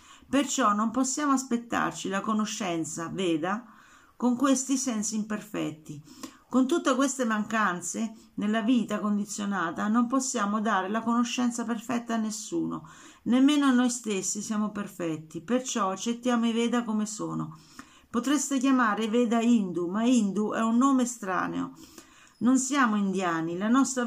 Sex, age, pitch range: female, 50-69, 200-250 Hz